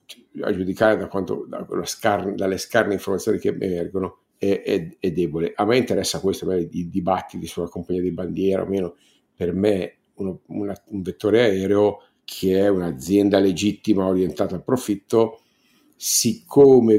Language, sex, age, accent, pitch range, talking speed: Italian, male, 50-69, native, 95-110 Hz, 140 wpm